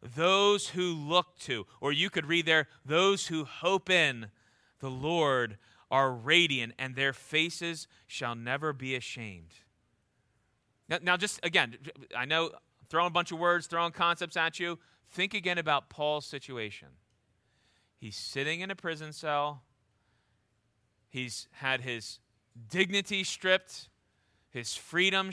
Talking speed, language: 135 wpm, English